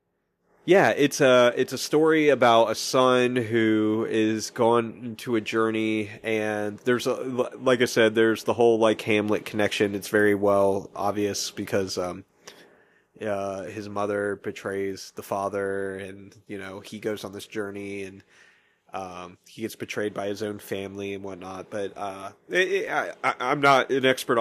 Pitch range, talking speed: 105-125 Hz, 165 wpm